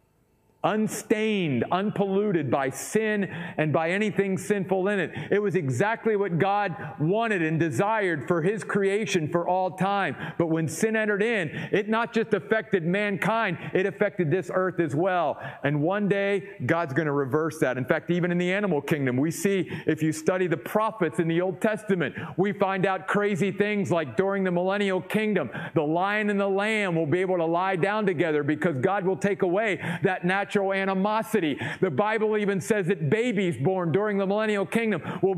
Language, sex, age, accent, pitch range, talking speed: English, male, 40-59, American, 165-210 Hz, 185 wpm